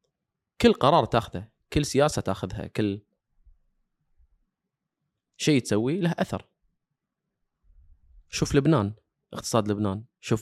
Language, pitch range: Arabic, 105-155 Hz